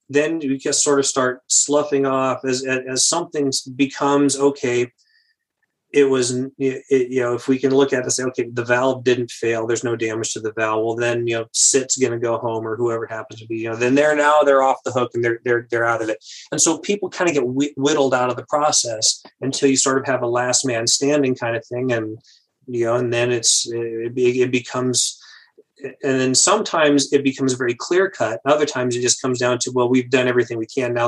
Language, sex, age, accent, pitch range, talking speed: English, male, 30-49, American, 120-140 Hz, 235 wpm